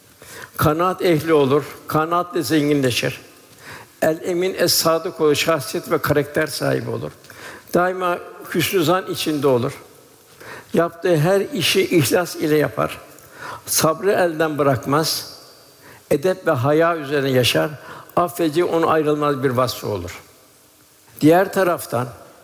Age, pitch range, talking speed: 60-79, 145-170 Hz, 105 wpm